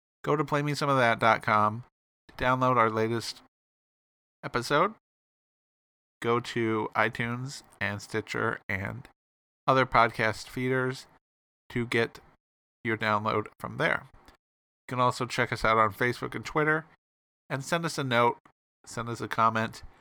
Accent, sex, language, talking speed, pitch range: American, male, English, 125 wpm, 105-130 Hz